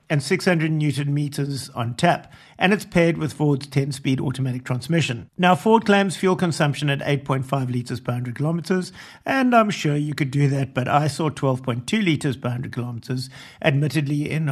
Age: 60-79